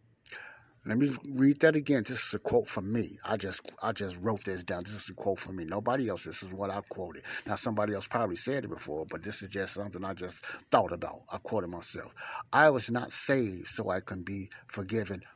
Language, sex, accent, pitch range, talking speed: English, male, American, 100-125 Hz, 230 wpm